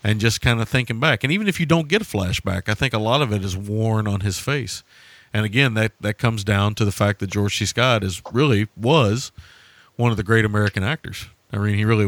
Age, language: 40-59, English